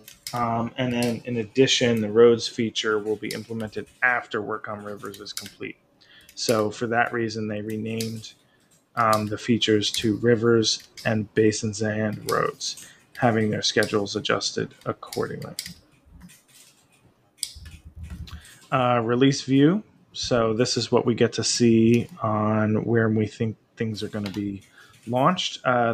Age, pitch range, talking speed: 20-39, 110-135 Hz, 135 wpm